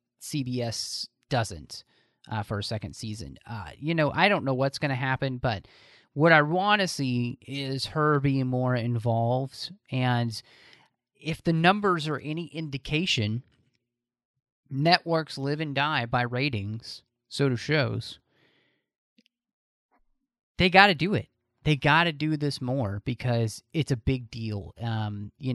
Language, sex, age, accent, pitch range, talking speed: English, male, 30-49, American, 120-150 Hz, 145 wpm